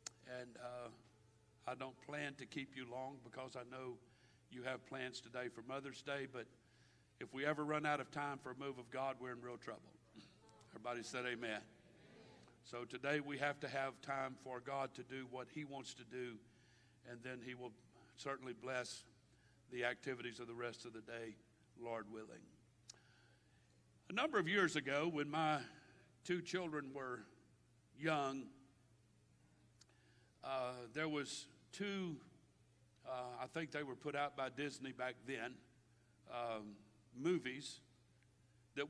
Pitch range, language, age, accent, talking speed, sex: 120-145 Hz, English, 60-79, American, 155 wpm, male